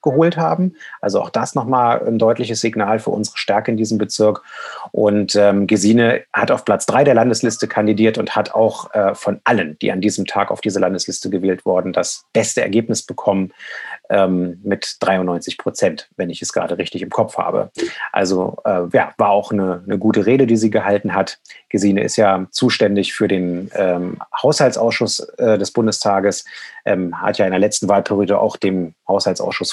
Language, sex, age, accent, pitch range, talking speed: German, male, 30-49, German, 100-135 Hz, 180 wpm